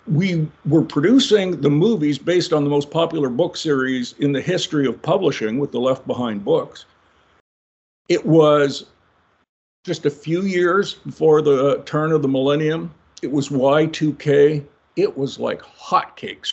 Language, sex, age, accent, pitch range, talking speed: English, male, 50-69, American, 135-175 Hz, 150 wpm